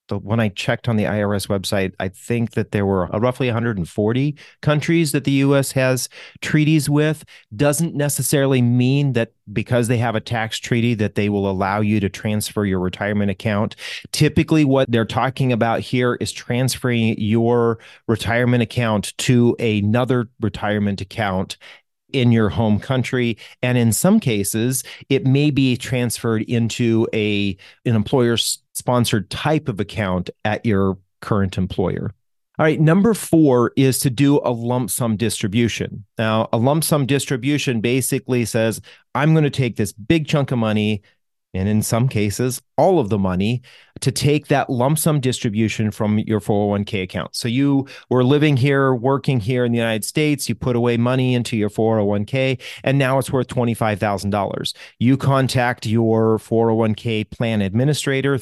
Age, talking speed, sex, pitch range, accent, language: 40-59, 155 wpm, male, 105-135 Hz, American, English